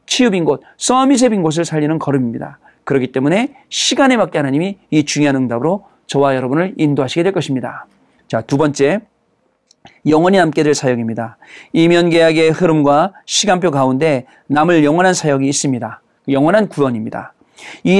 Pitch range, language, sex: 140-185 Hz, Korean, male